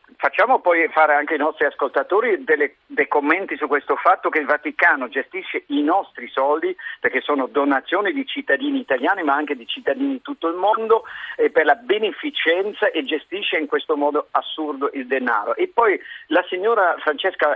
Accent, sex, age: native, male, 50-69